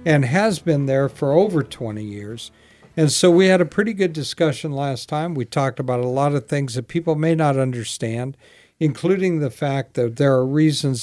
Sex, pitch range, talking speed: male, 125-155 Hz, 200 wpm